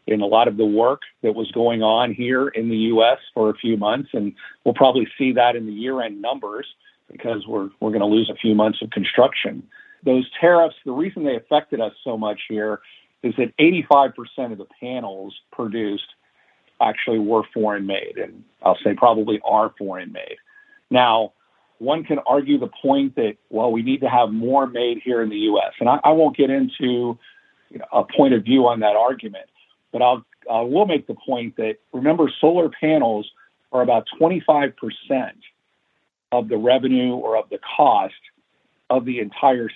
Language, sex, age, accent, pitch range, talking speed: English, male, 50-69, American, 110-145 Hz, 185 wpm